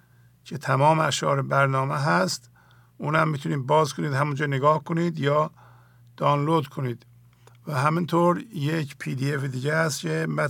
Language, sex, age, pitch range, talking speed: English, male, 50-69, 125-155 Hz, 130 wpm